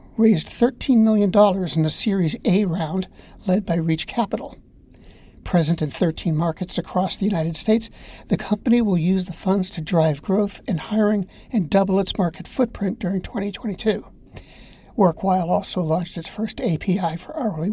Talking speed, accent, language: 155 wpm, American, English